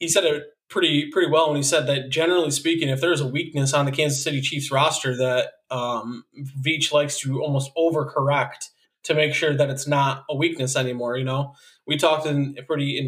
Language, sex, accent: English, male, American